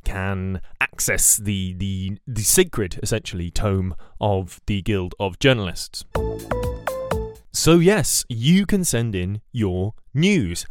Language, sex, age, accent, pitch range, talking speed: English, male, 20-39, British, 100-145 Hz, 120 wpm